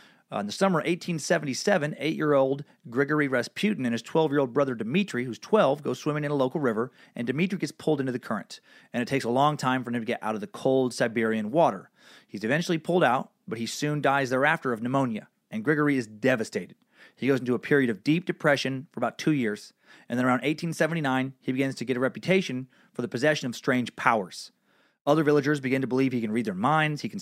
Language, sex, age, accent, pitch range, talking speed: English, male, 30-49, American, 120-155 Hz, 225 wpm